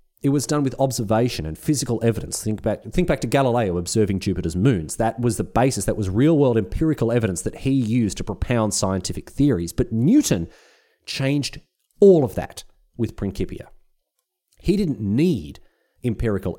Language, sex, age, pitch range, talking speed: English, male, 30-49, 95-140 Hz, 165 wpm